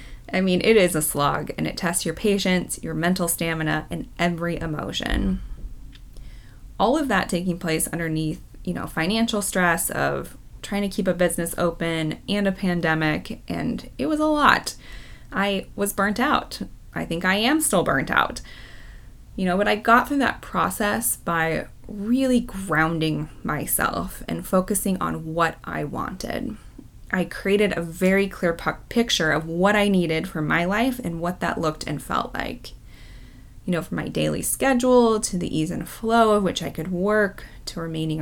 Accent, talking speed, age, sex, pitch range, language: American, 170 wpm, 20-39, female, 165-210 Hz, English